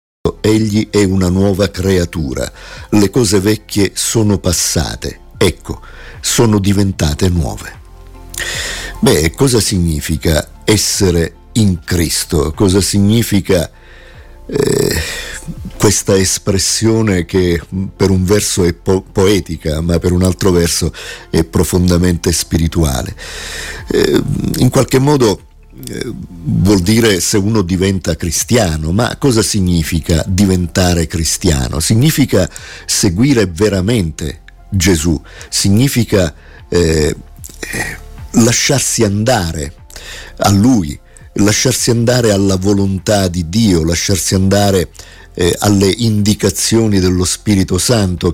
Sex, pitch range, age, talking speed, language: male, 85-105 Hz, 50-69, 95 wpm, Italian